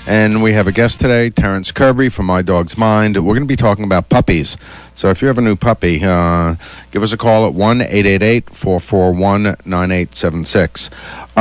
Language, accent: English, American